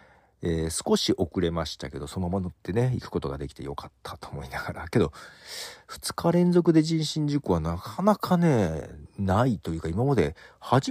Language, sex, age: Japanese, male, 40-59